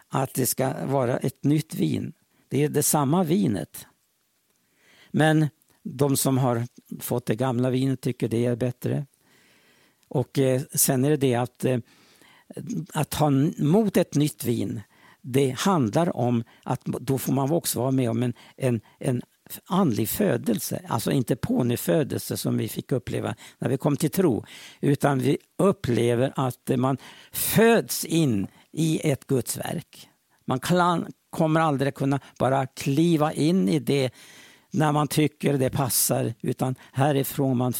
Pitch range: 130-165 Hz